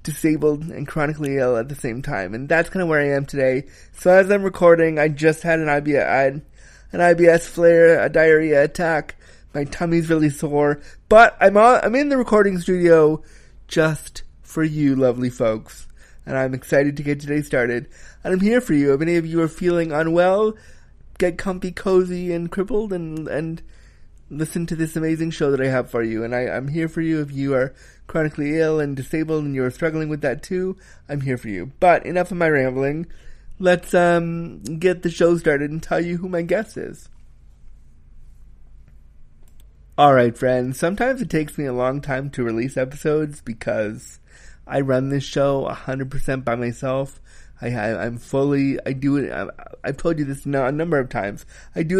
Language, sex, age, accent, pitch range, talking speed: English, male, 30-49, American, 130-170 Hz, 185 wpm